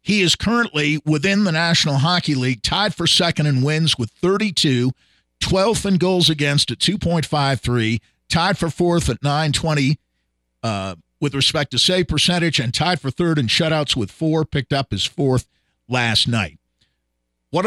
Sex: male